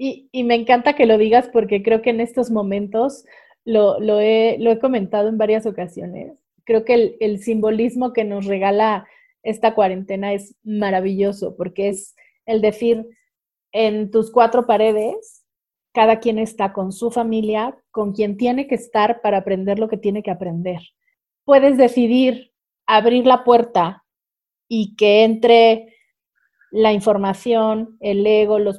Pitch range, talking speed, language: 205-240 Hz, 150 wpm, Spanish